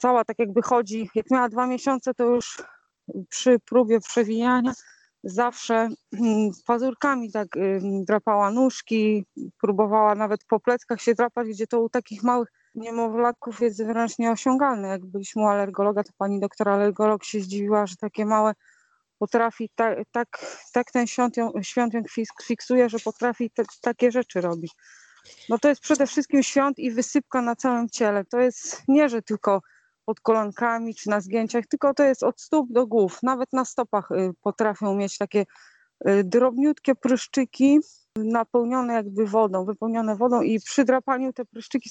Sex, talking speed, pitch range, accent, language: female, 160 wpm, 215-255 Hz, native, Polish